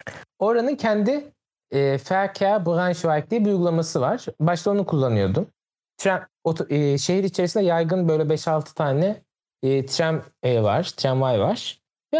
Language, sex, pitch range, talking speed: Turkish, male, 135-180 Hz, 135 wpm